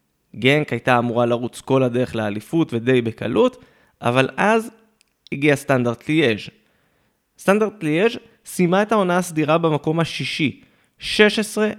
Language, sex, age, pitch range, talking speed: Hebrew, male, 20-39, 135-195 Hz, 115 wpm